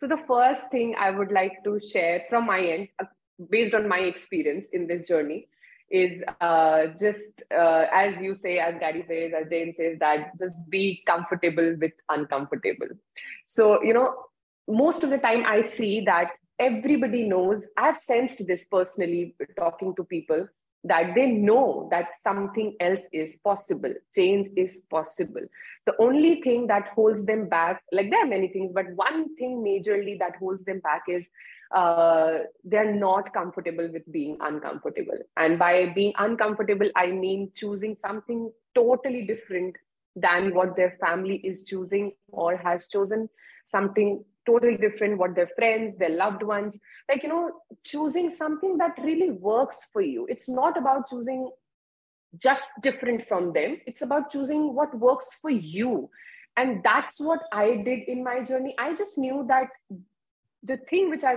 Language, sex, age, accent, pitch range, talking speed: English, female, 30-49, Indian, 180-255 Hz, 160 wpm